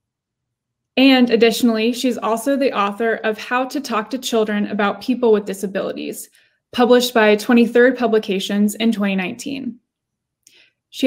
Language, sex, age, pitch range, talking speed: English, female, 10-29, 210-250 Hz, 125 wpm